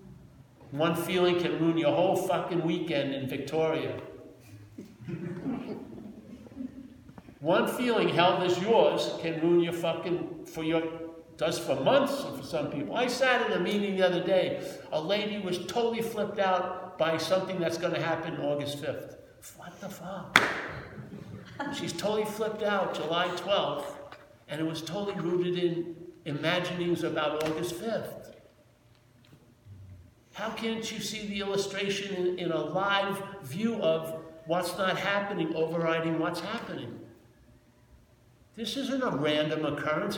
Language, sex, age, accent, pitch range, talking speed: English, male, 60-79, American, 160-205 Hz, 135 wpm